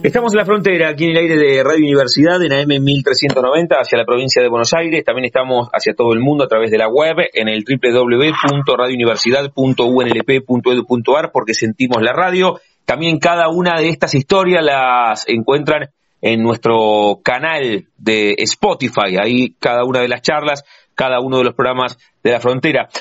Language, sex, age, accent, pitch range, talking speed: Spanish, male, 30-49, Argentinian, 125-160 Hz, 170 wpm